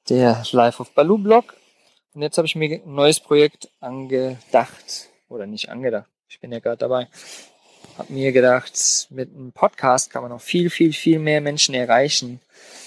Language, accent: German, German